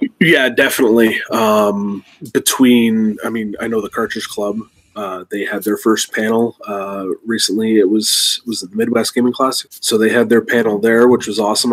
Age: 20-39